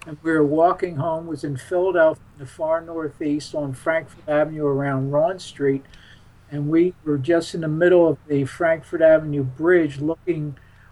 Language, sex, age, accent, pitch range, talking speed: English, male, 50-69, American, 145-185 Hz, 175 wpm